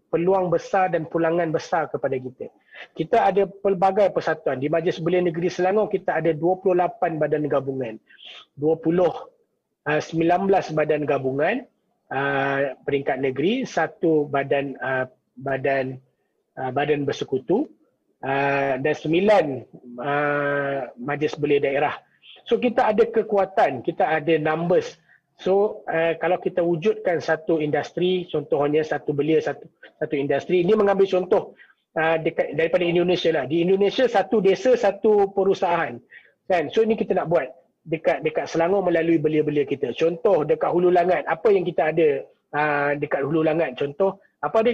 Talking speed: 140 wpm